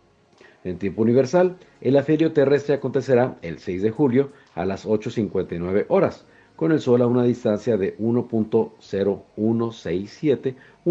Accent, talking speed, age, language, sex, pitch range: Mexican, 125 wpm, 50-69, Spanish, male, 100-140 Hz